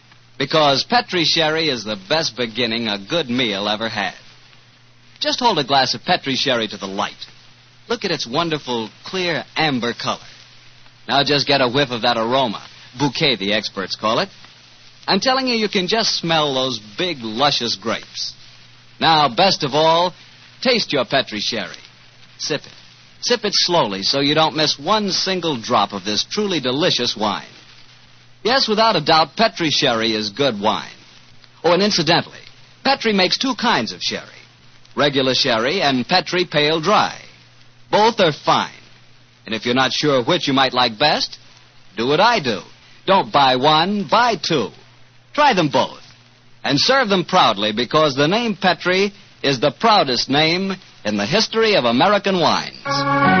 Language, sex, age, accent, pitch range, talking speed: English, male, 60-79, American, 125-185 Hz, 165 wpm